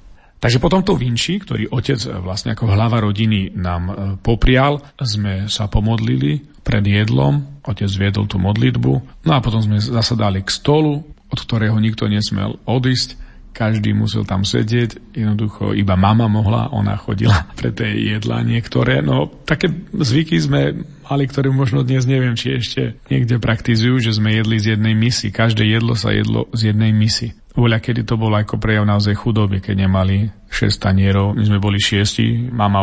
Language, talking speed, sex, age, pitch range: Slovak, 165 wpm, male, 40-59, 105-125 Hz